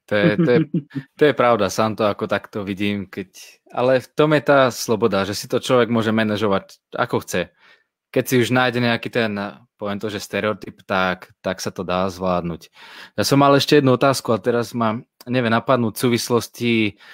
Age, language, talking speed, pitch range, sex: 20-39, Slovak, 195 wpm, 110-130 Hz, male